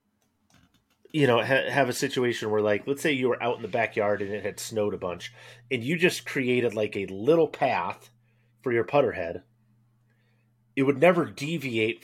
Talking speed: 190 wpm